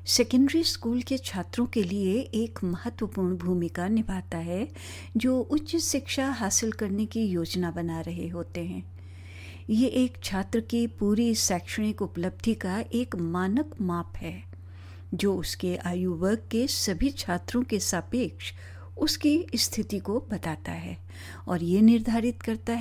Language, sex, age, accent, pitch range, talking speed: Hindi, female, 60-79, native, 165-235 Hz, 135 wpm